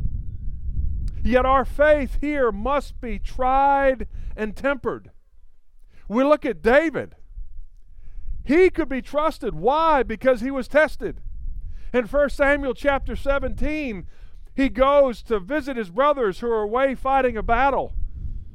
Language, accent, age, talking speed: English, American, 50-69, 125 wpm